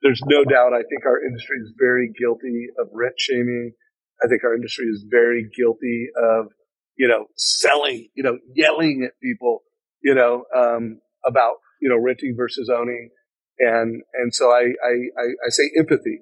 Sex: male